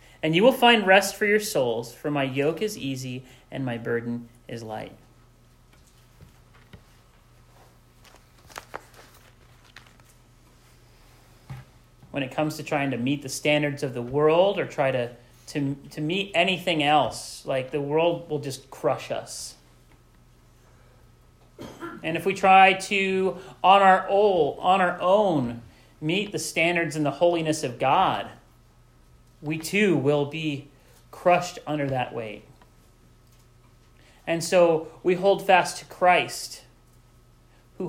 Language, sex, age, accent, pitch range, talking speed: English, male, 40-59, American, 120-175 Hz, 125 wpm